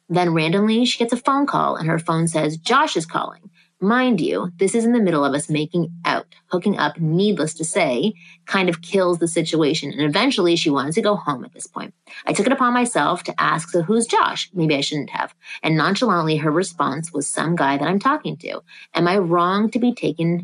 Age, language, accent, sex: 30-49, English, American, female